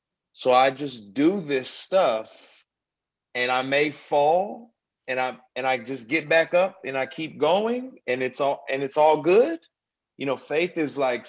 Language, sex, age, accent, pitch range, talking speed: English, male, 30-49, American, 105-140 Hz, 180 wpm